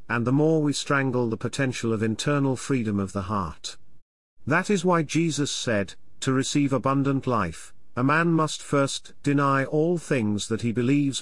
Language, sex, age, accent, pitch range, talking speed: English, male, 40-59, British, 110-145 Hz, 170 wpm